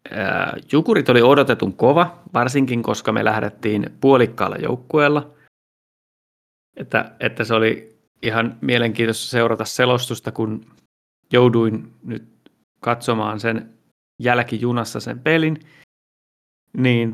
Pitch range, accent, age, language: 110-130 Hz, native, 30-49, Finnish